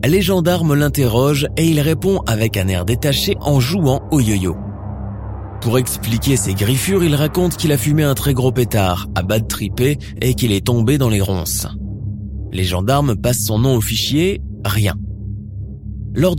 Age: 20-39